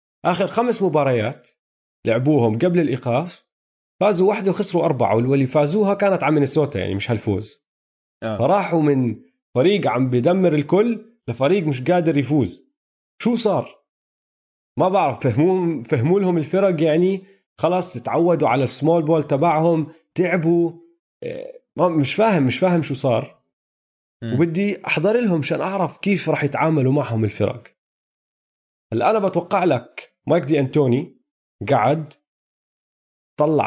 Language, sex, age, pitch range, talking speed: Arabic, male, 30-49, 120-175 Hz, 120 wpm